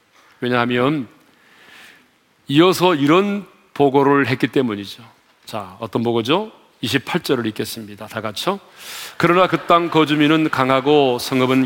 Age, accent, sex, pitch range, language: 40-59, native, male, 125-180 Hz, Korean